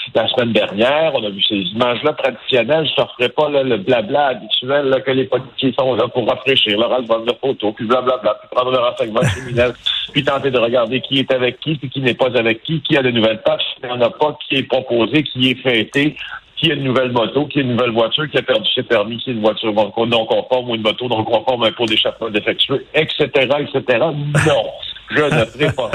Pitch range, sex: 115-155 Hz, male